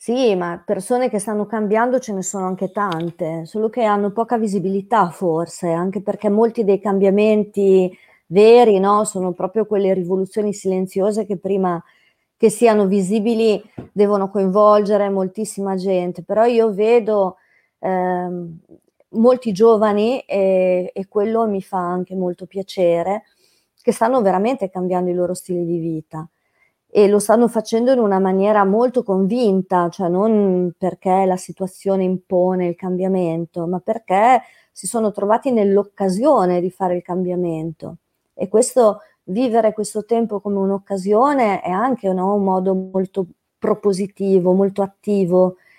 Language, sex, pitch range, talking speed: Italian, female, 185-220 Hz, 135 wpm